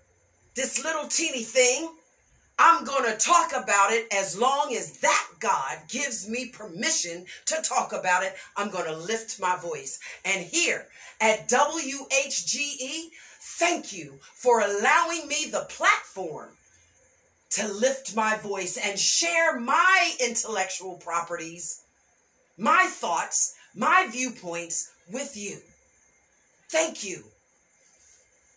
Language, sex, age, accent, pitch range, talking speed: English, female, 50-69, American, 215-335 Hz, 120 wpm